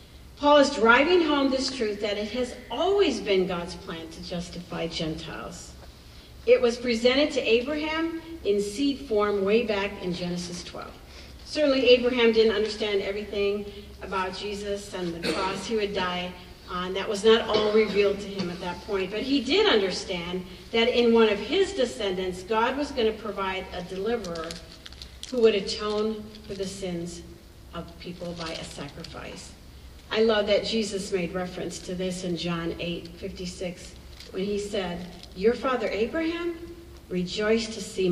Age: 50-69